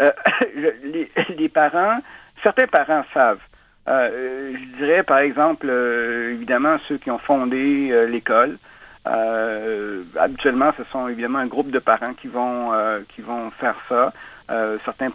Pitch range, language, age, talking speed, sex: 120-145 Hz, French, 60-79, 155 wpm, male